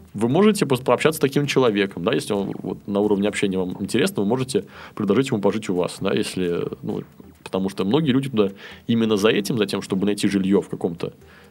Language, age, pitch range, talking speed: Russian, 20-39, 105-135 Hz, 210 wpm